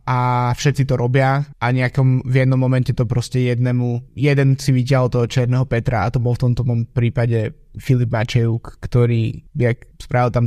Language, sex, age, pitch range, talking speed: Slovak, male, 20-39, 120-135 Hz, 165 wpm